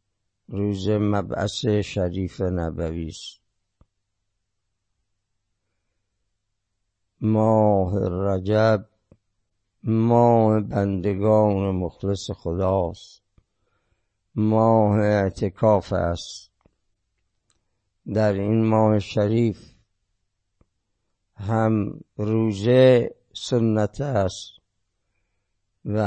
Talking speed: 50 wpm